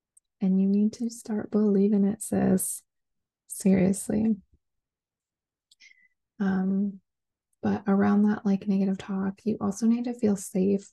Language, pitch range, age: English, 175-210 Hz, 20-39